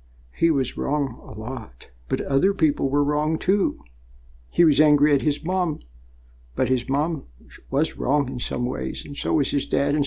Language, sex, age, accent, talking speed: English, male, 60-79, American, 185 wpm